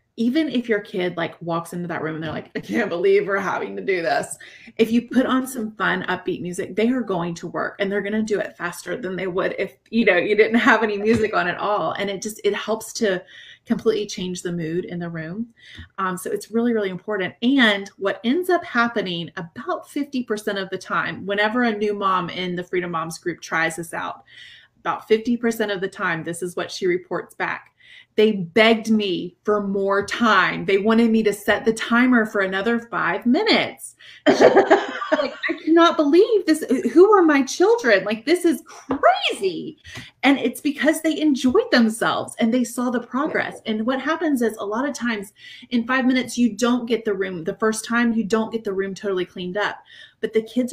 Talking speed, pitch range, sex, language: 210 wpm, 185-245 Hz, female, English